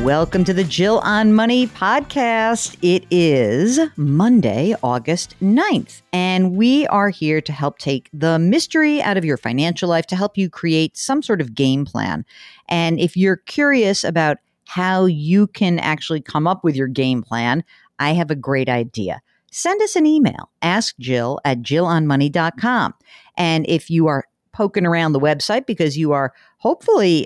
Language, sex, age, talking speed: English, female, 50-69, 165 wpm